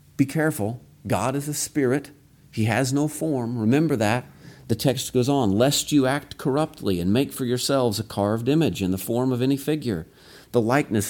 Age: 40-59